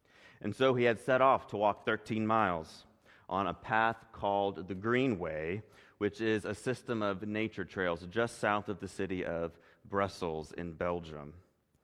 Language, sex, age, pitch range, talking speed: English, male, 30-49, 90-115 Hz, 160 wpm